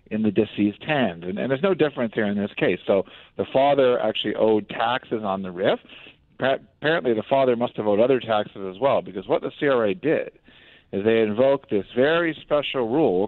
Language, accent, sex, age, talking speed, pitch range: English, American, male, 50-69, 205 wpm, 110-135 Hz